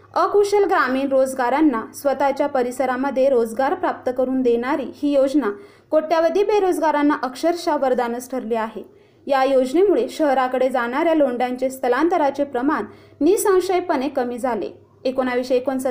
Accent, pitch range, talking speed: native, 255-320 Hz, 105 wpm